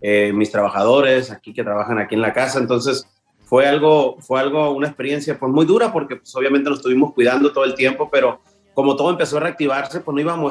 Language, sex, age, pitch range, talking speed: Spanish, male, 30-49, 120-150 Hz, 225 wpm